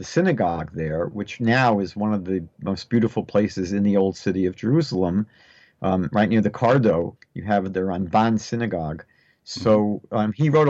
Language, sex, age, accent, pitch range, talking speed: English, male, 50-69, American, 100-120 Hz, 180 wpm